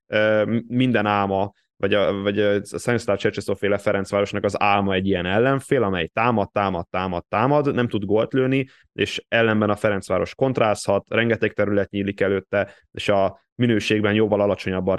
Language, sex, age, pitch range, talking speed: Hungarian, male, 20-39, 95-110 Hz, 150 wpm